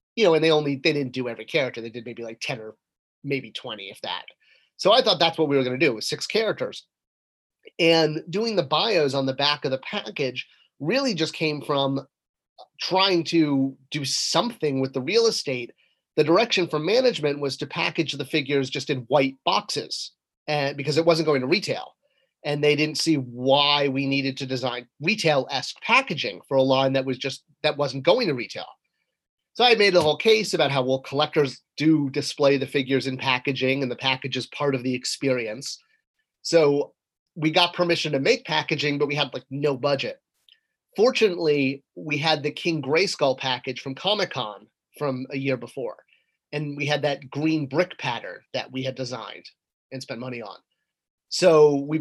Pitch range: 135-160 Hz